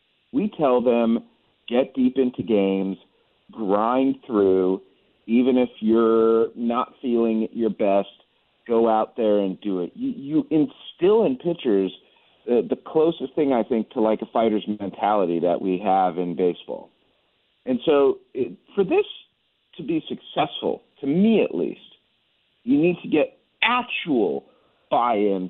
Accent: American